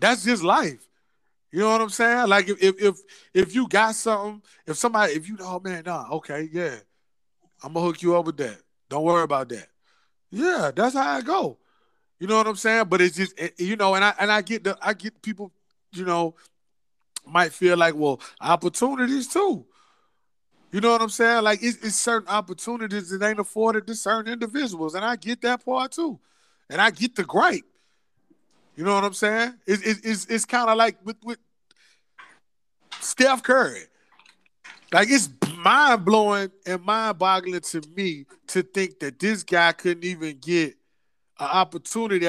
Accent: American